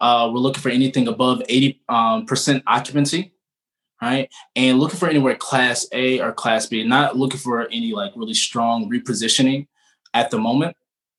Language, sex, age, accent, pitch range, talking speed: English, male, 20-39, American, 120-145 Hz, 165 wpm